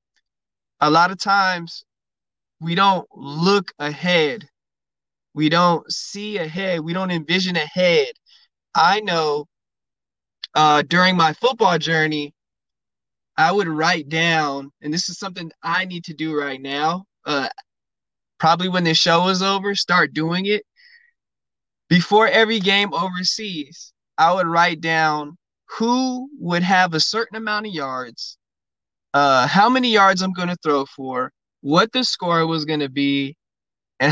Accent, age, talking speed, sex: American, 20-39, 140 wpm, male